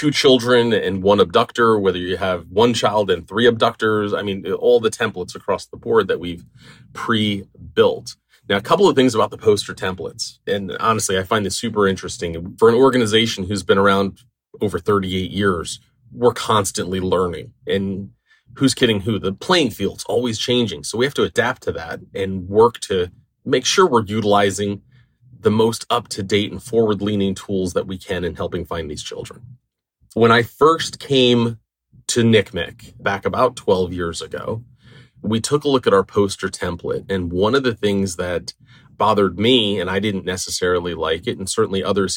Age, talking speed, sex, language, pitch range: 30-49, 180 wpm, male, English, 95-120 Hz